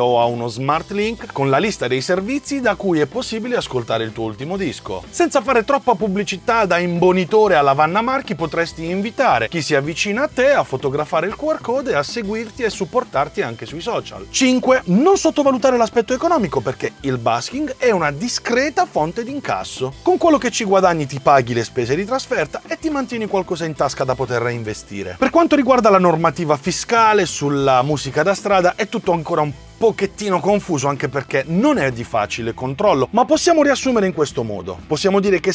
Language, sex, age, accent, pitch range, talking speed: Italian, male, 30-49, native, 150-250 Hz, 190 wpm